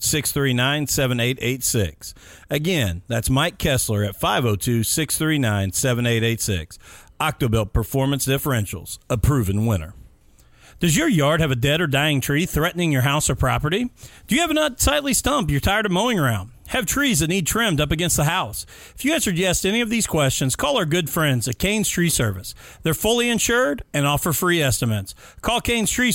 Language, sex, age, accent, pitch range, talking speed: English, male, 40-59, American, 125-185 Hz, 185 wpm